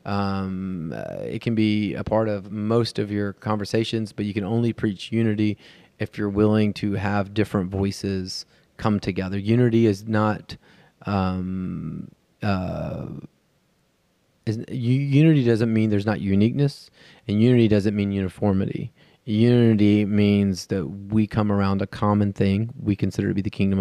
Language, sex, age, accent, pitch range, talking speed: English, male, 30-49, American, 95-105 Hz, 150 wpm